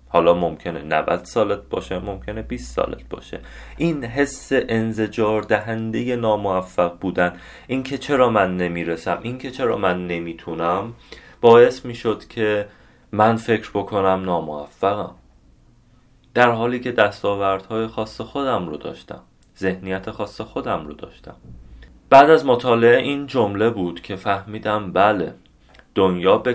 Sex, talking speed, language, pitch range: male, 125 wpm, Persian, 90-115 Hz